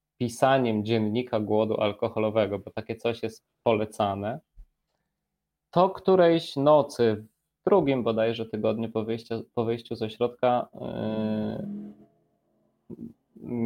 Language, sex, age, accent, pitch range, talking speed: Polish, male, 20-39, native, 110-135 Hz, 100 wpm